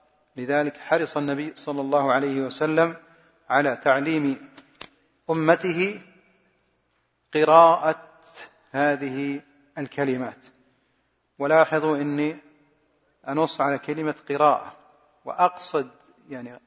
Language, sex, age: Arabic, male, 40-59